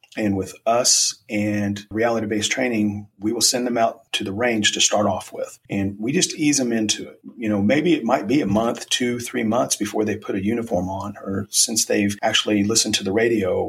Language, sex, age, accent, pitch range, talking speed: English, male, 40-59, American, 100-115 Hz, 220 wpm